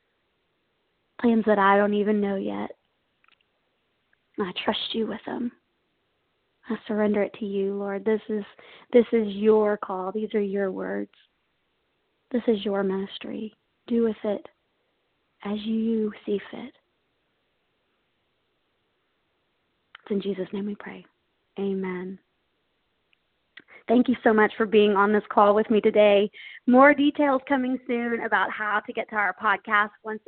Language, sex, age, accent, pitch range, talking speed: English, female, 30-49, American, 210-245 Hz, 140 wpm